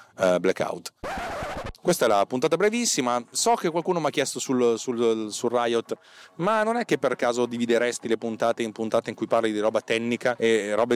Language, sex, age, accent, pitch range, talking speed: Italian, male, 30-49, native, 105-155 Hz, 190 wpm